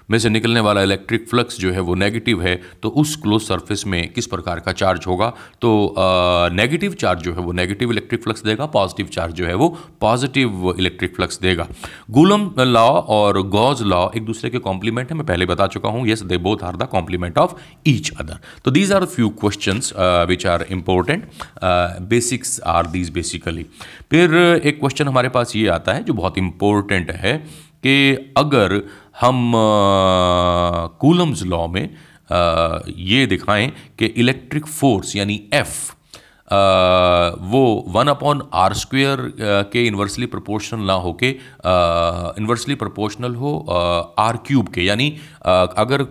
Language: Hindi